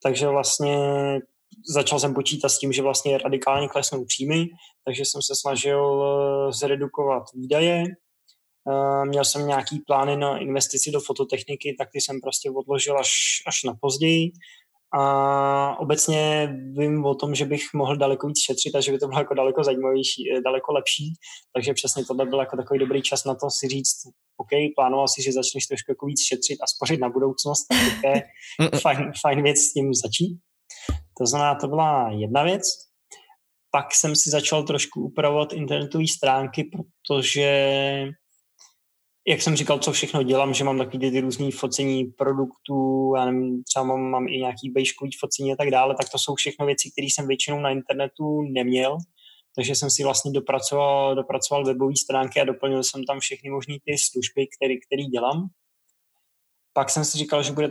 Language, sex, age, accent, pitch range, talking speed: Czech, male, 20-39, native, 135-145 Hz, 165 wpm